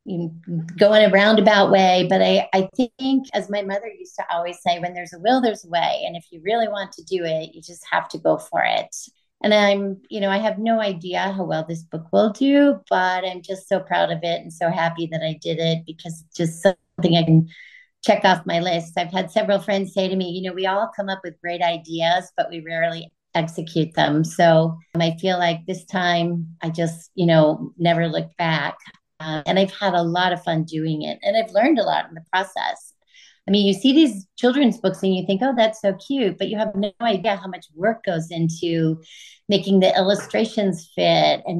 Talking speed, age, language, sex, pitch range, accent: 225 wpm, 30-49, English, female, 170-205 Hz, American